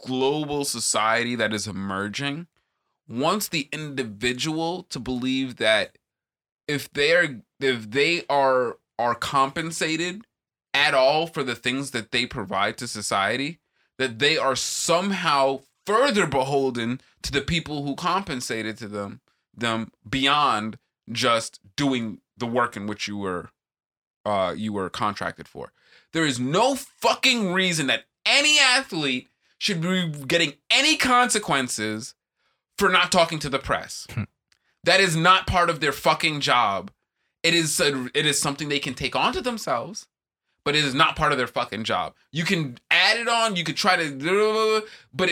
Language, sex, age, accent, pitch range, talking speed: English, male, 20-39, American, 130-185 Hz, 150 wpm